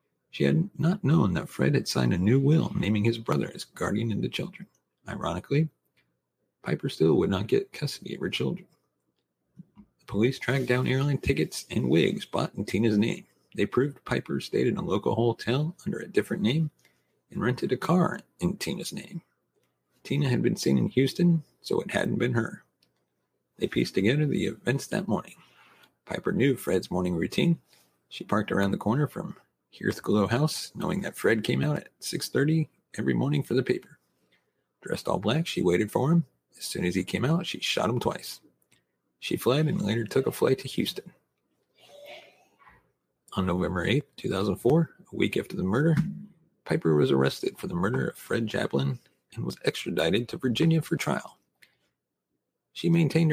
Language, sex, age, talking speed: English, male, 40-59, 175 wpm